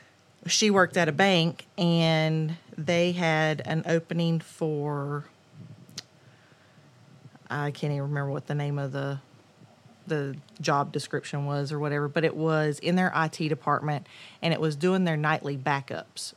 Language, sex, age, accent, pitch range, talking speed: English, female, 30-49, American, 145-165 Hz, 145 wpm